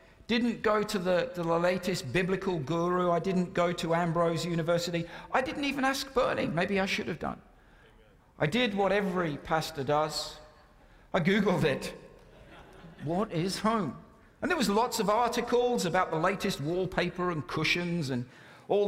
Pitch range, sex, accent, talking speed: 135-180 Hz, male, British, 165 wpm